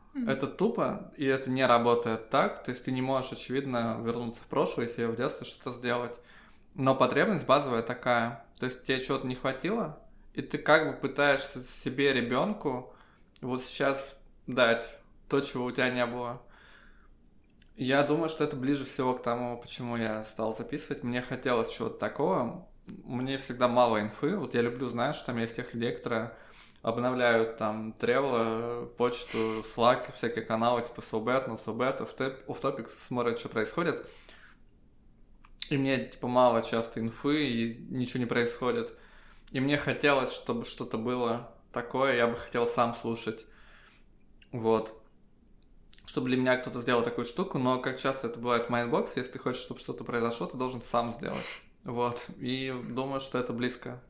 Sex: male